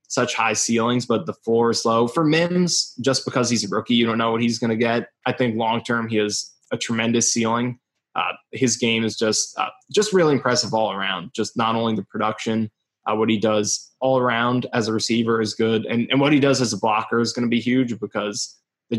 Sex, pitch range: male, 110-125 Hz